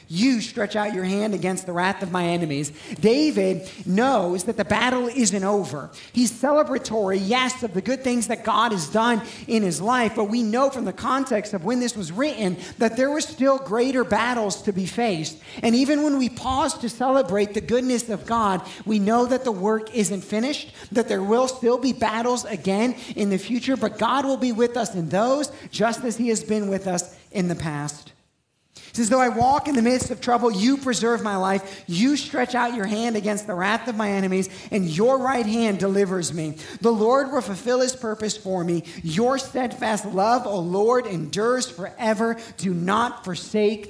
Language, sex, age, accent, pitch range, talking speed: English, male, 40-59, American, 195-245 Hz, 200 wpm